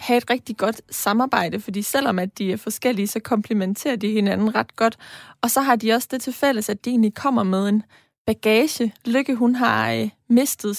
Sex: female